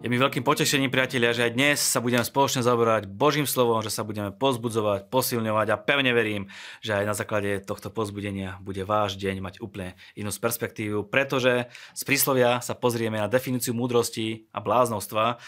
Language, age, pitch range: Slovak, 20-39, 95-120 Hz